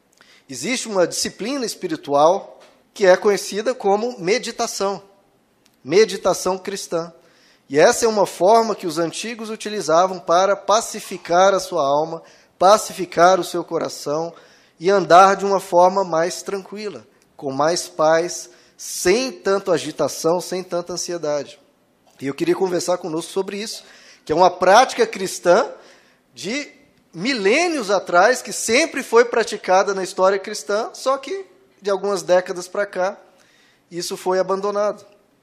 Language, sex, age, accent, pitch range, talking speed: Portuguese, male, 20-39, Brazilian, 175-210 Hz, 130 wpm